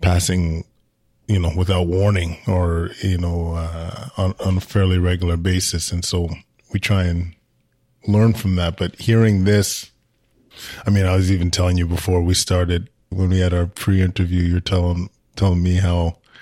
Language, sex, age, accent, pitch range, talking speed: English, male, 20-39, American, 85-95 Hz, 170 wpm